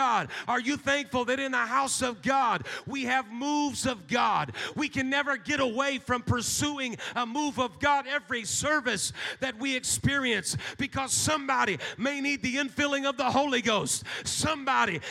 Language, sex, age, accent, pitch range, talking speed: English, male, 40-59, American, 190-270 Hz, 165 wpm